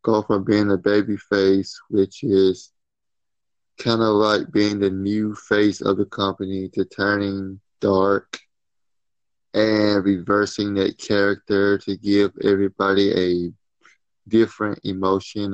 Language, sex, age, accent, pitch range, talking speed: English, male, 20-39, American, 95-110 Hz, 120 wpm